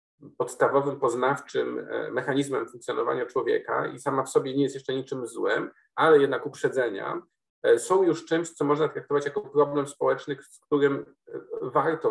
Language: Polish